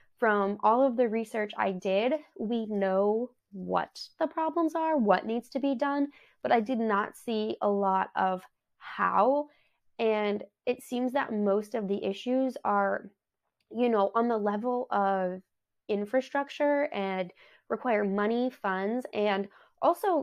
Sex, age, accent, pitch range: female, 20-39, American, 200-245 Hz